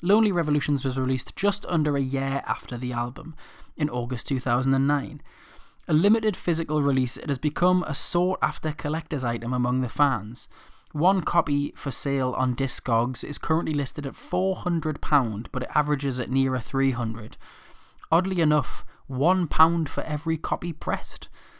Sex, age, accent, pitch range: male, 20-39, British, 130-155 Hz